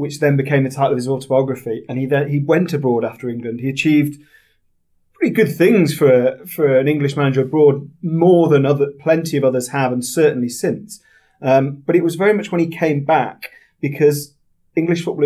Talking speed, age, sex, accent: 195 wpm, 30-49, male, British